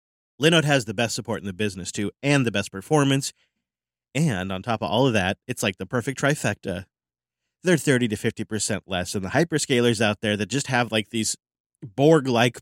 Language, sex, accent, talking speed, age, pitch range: English, male, American, 195 wpm, 30-49, 95-125 Hz